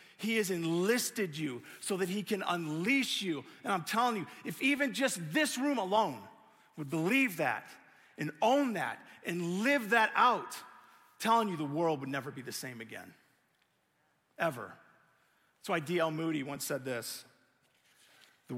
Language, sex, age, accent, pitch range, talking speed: English, male, 40-59, American, 135-220 Hz, 160 wpm